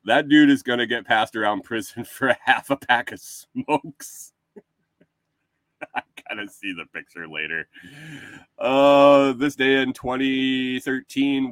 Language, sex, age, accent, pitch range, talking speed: English, male, 30-49, American, 110-150 Hz, 145 wpm